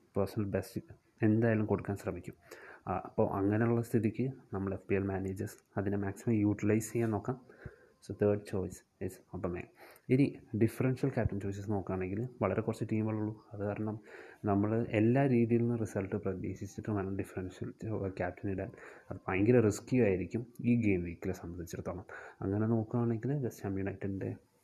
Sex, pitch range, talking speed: male, 100-120 Hz, 135 wpm